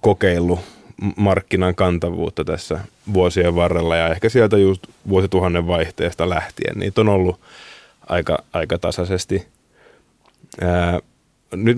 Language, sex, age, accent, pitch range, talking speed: Finnish, male, 30-49, native, 90-105 Hz, 105 wpm